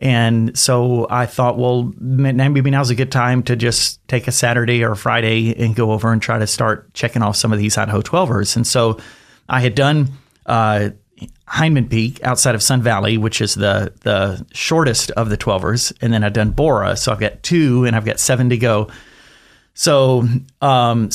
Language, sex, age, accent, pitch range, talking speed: English, male, 30-49, American, 110-125 Hz, 195 wpm